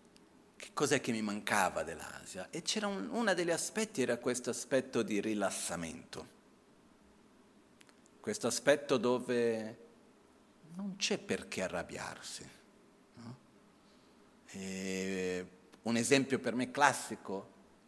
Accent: native